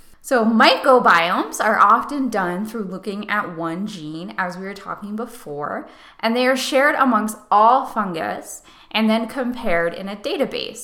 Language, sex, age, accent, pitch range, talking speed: English, female, 10-29, American, 190-265 Hz, 155 wpm